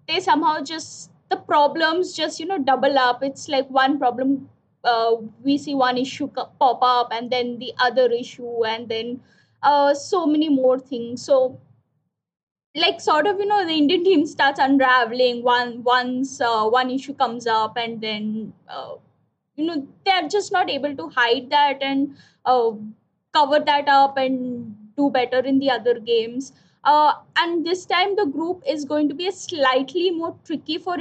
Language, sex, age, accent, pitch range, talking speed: English, female, 20-39, Indian, 250-305 Hz, 175 wpm